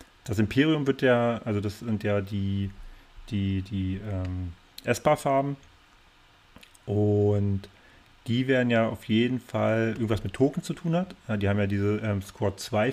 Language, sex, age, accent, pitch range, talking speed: German, male, 30-49, German, 100-115 Hz, 155 wpm